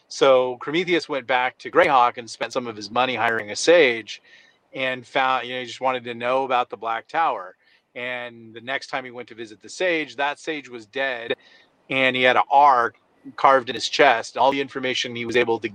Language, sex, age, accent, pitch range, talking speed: English, male, 30-49, American, 115-135 Hz, 220 wpm